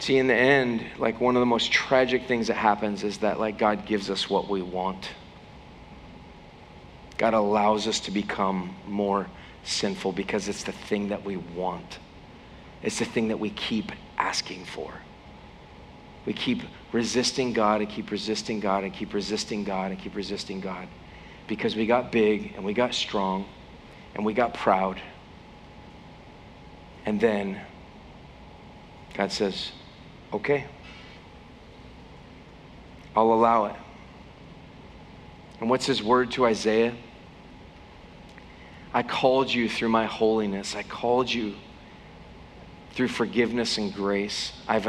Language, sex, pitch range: English, male, 100-120 Hz